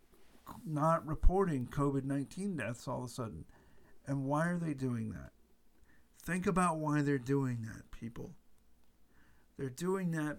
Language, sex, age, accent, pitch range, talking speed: English, male, 50-69, American, 110-145 Hz, 140 wpm